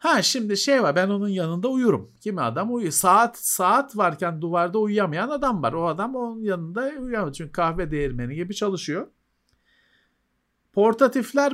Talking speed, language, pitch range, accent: 150 wpm, Turkish, 140-185 Hz, native